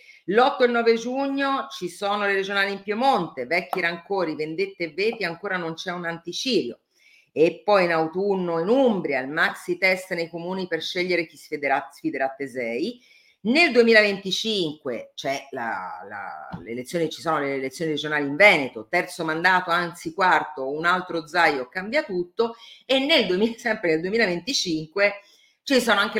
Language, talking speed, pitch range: Italian, 155 wpm, 135-200 Hz